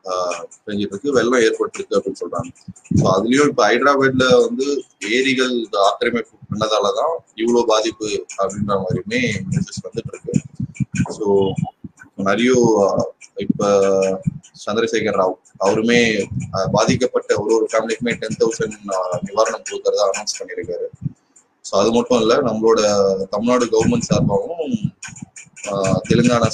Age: 20-39